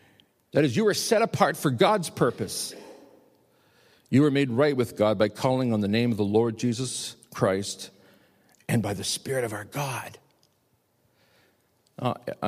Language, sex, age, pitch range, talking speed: English, male, 50-69, 120-195 Hz, 160 wpm